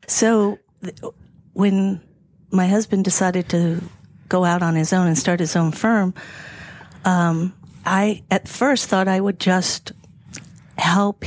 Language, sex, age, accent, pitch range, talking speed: English, female, 50-69, American, 175-210 Hz, 135 wpm